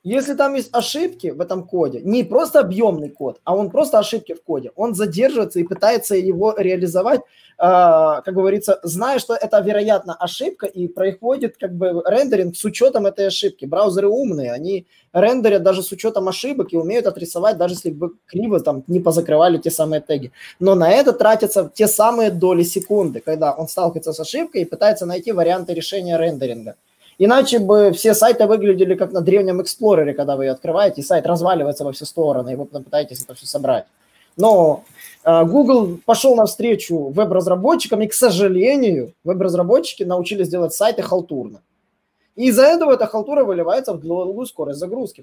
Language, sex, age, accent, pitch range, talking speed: Russian, male, 20-39, native, 170-220 Hz, 165 wpm